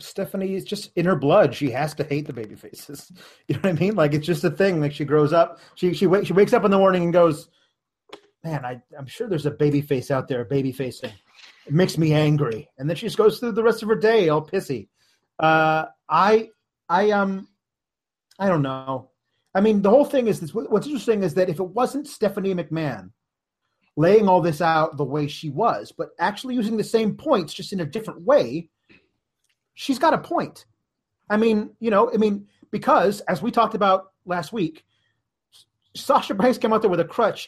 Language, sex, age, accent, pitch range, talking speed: English, male, 30-49, American, 150-205 Hz, 215 wpm